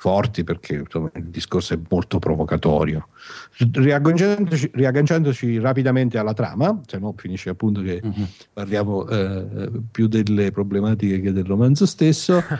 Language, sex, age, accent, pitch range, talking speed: Italian, male, 50-69, native, 100-130 Hz, 125 wpm